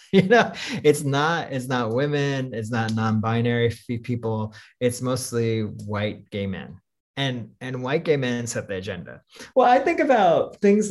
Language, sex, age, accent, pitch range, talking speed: English, male, 20-39, American, 110-160 Hz, 160 wpm